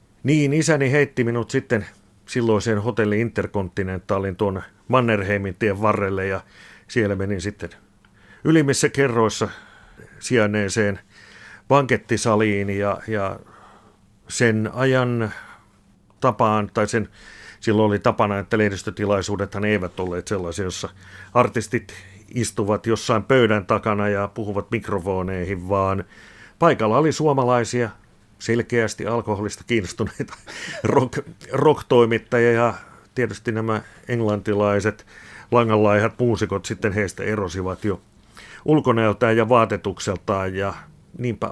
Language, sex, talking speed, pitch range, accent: Finnish, male, 95 wpm, 100-115 Hz, native